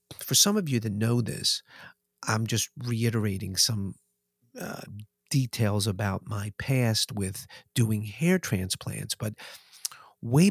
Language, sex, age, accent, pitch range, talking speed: English, male, 50-69, American, 110-150 Hz, 125 wpm